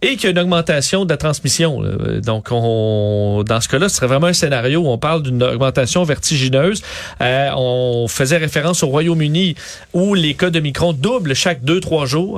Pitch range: 125-170 Hz